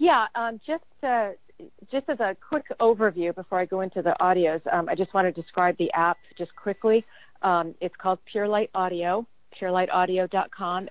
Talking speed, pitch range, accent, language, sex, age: 175 wpm, 175-215 Hz, American, English, female, 40-59